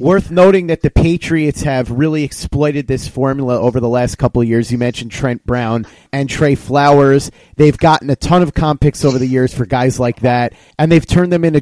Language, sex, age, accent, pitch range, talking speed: English, male, 30-49, American, 125-155 Hz, 215 wpm